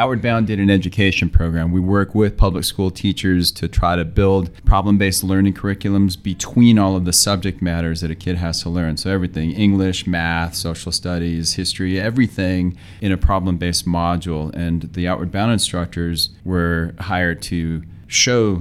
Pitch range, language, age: 85-100 Hz, English, 30-49